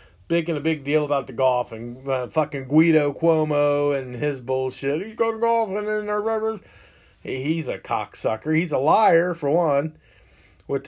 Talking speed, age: 165 wpm, 40-59